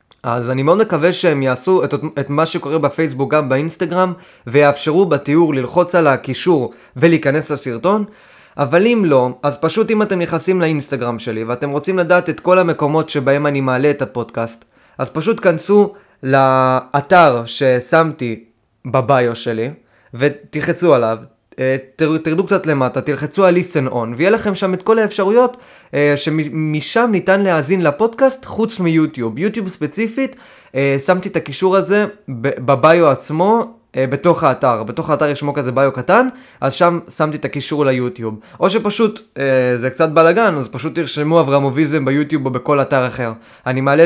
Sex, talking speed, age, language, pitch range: male, 145 wpm, 20-39, Hebrew, 135-185 Hz